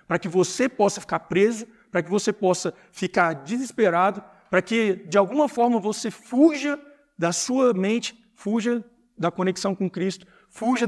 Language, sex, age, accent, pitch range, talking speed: Portuguese, male, 50-69, Brazilian, 165-215 Hz, 155 wpm